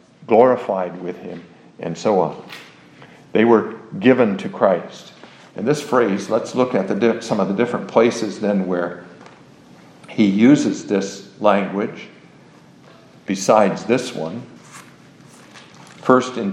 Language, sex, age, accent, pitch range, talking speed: English, male, 50-69, American, 100-120 Hz, 120 wpm